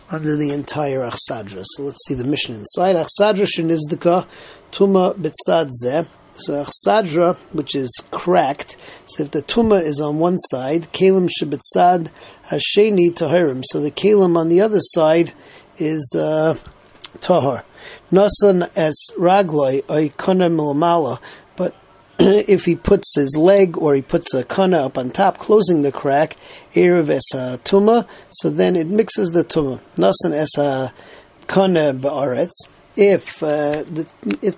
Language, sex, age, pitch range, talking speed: English, male, 40-59, 145-185 Hz, 130 wpm